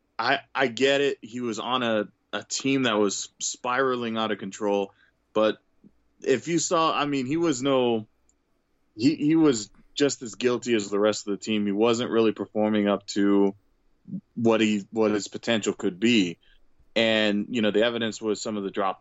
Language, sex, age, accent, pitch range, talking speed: English, male, 20-39, American, 100-125 Hz, 190 wpm